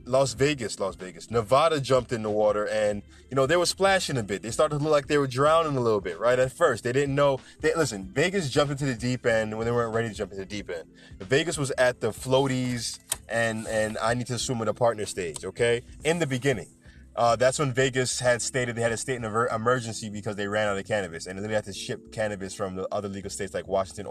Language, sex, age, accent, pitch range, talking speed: English, male, 20-39, American, 105-140 Hz, 255 wpm